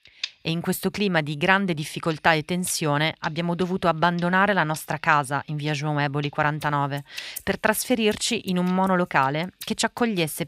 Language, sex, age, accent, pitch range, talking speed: Italian, female, 30-49, native, 145-185 Hz, 160 wpm